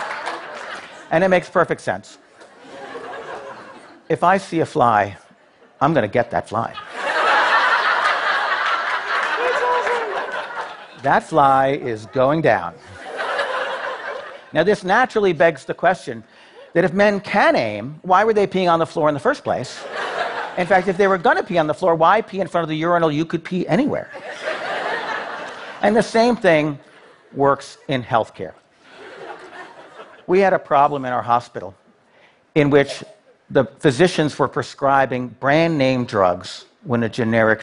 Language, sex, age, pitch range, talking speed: Russian, male, 50-69, 120-180 Hz, 145 wpm